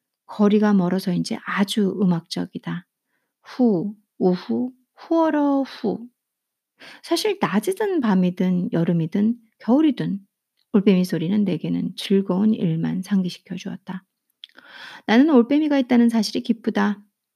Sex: female